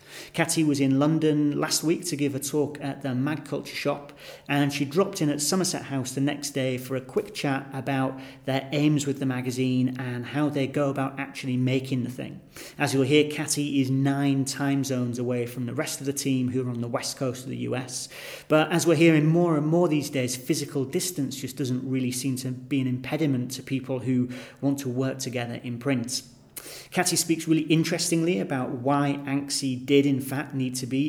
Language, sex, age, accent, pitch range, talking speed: English, male, 30-49, British, 130-150 Hz, 210 wpm